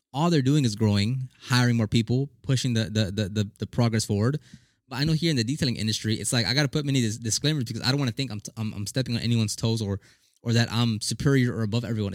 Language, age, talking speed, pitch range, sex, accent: English, 20-39, 260 wpm, 110-150 Hz, male, American